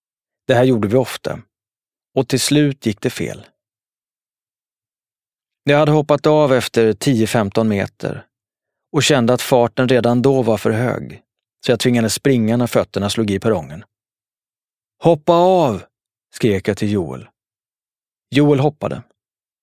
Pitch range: 105-125 Hz